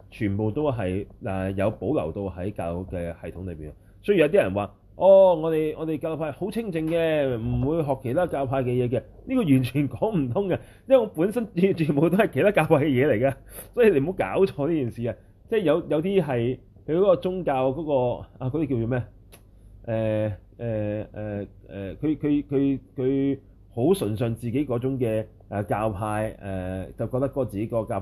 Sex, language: male, Chinese